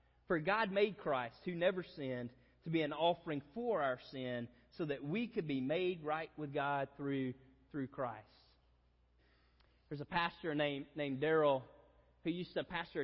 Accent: American